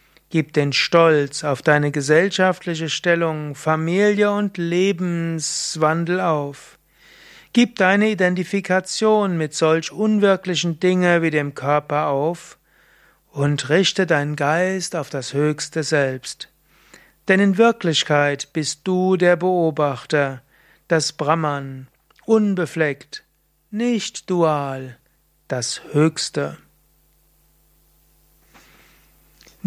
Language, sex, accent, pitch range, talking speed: German, male, German, 150-180 Hz, 90 wpm